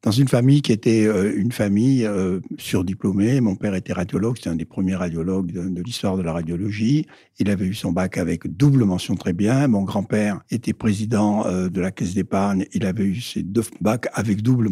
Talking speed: 195 wpm